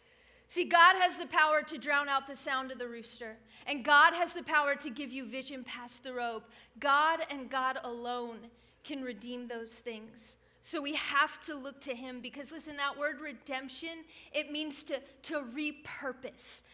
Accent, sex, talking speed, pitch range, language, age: American, female, 180 wpm, 245-295 Hz, English, 30-49